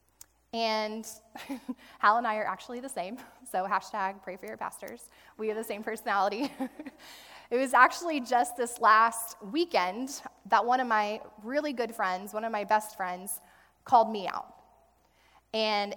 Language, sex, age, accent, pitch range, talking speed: English, female, 20-39, American, 205-255 Hz, 160 wpm